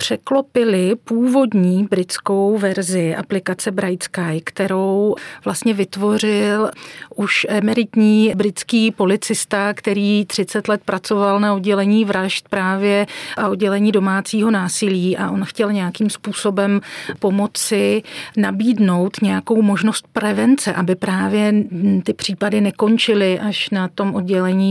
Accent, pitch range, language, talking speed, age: native, 195-215 Hz, Czech, 110 wpm, 40-59